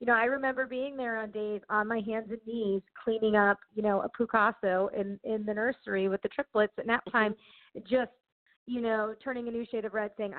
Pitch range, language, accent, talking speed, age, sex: 185-220 Hz, English, American, 225 wpm, 30-49, female